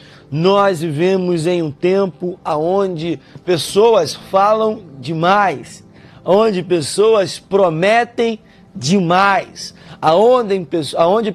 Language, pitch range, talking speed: Portuguese, 165-225 Hz, 75 wpm